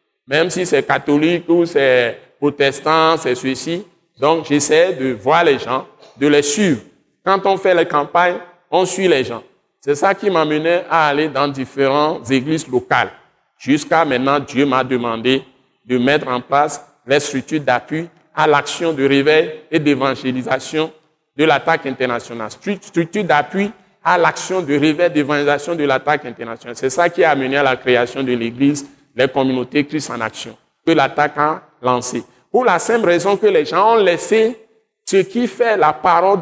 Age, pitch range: 60-79, 145-200 Hz